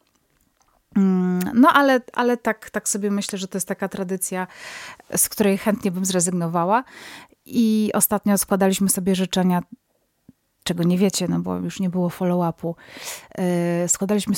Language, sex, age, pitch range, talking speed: Polish, female, 30-49, 180-200 Hz, 140 wpm